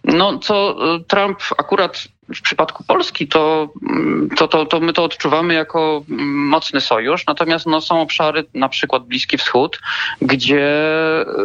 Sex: male